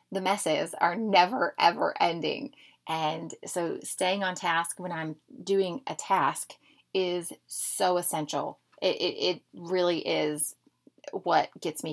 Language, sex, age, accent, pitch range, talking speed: English, female, 30-49, American, 165-225 Hz, 135 wpm